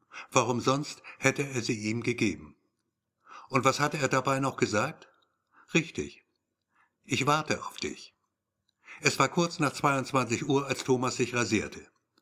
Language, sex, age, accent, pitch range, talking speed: German, male, 60-79, German, 110-145 Hz, 140 wpm